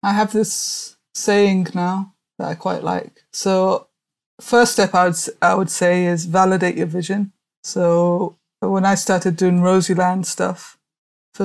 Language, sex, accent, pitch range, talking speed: English, female, British, 175-195 Hz, 150 wpm